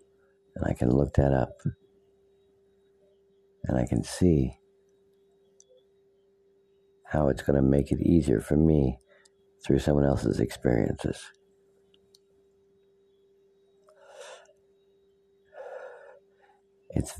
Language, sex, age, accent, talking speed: English, male, 60-79, American, 75 wpm